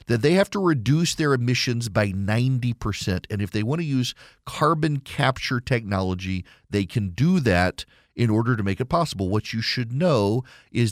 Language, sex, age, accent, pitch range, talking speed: English, male, 40-59, American, 100-130 Hz, 180 wpm